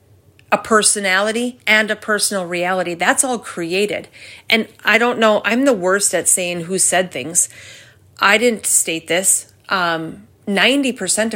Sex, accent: female, American